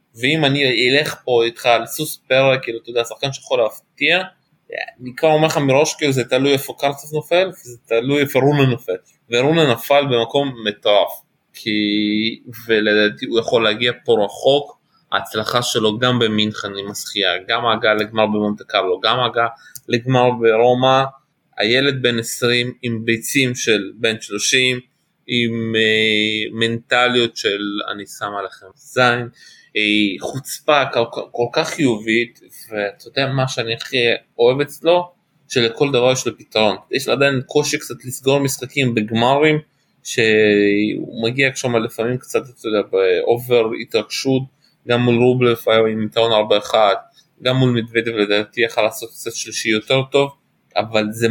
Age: 20-39